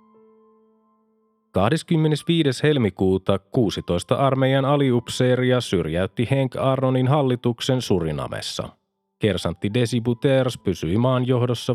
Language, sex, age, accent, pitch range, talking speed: Finnish, male, 30-49, native, 110-135 Hz, 75 wpm